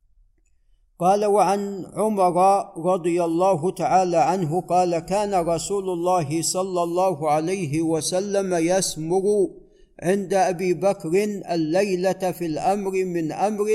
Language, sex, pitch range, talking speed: Arabic, male, 165-195 Hz, 105 wpm